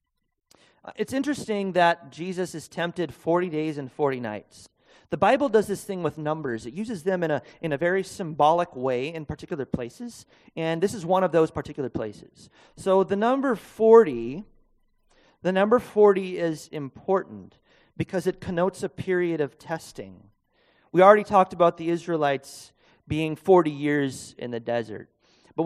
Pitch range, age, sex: 145-190 Hz, 30-49, male